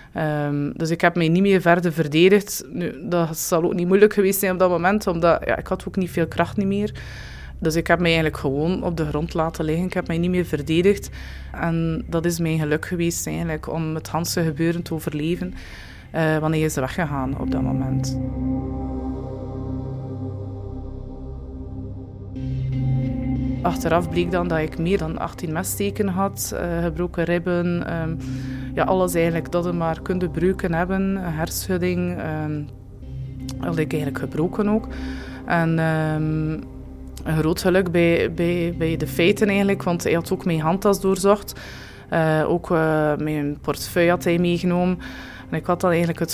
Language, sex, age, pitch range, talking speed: Dutch, female, 20-39, 145-180 Hz, 170 wpm